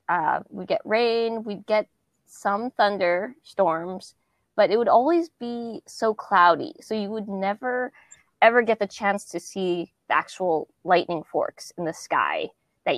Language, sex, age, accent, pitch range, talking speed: English, female, 20-39, American, 175-215 Hz, 160 wpm